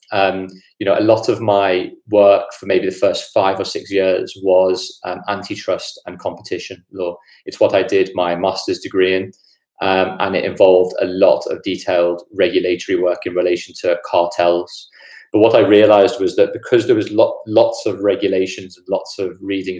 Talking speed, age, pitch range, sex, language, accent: 185 wpm, 30-49, 95-110 Hz, male, English, British